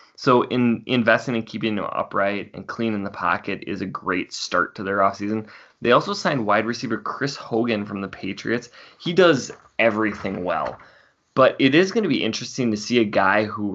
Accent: American